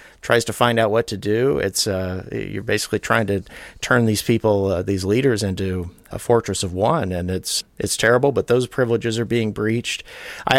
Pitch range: 95-110 Hz